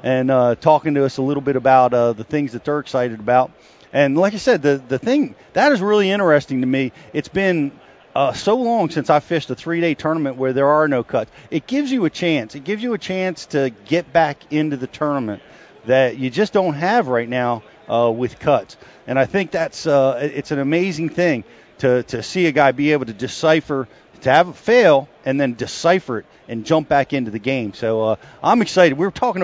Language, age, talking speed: English, 40-59, 235 wpm